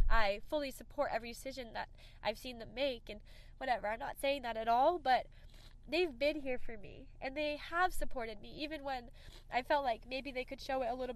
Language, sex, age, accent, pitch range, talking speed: English, female, 10-29, American, 260-310 Hz, 220 wpm